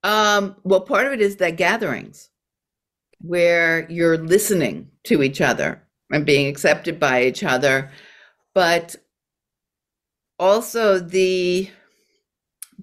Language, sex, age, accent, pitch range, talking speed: English, female, 60-79, American, 150-195 Hz, 110 wpm